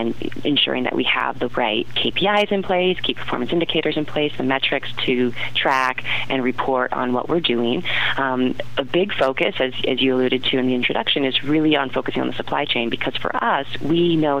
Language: English